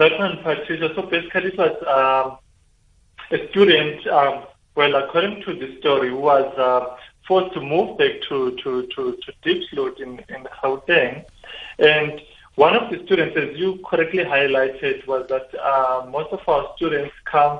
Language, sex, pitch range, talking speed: English, male, 130-185 Hz, 155 wpm